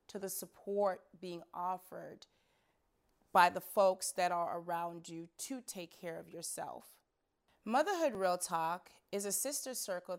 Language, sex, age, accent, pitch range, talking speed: English, female, 30-49, American, 175-215 Hz, 140 wpm